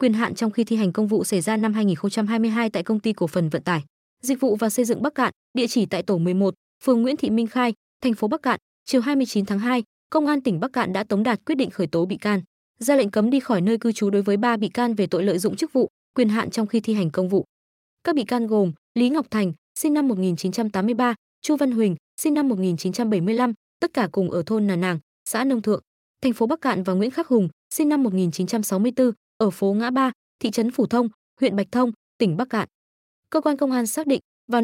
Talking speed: 250 wpm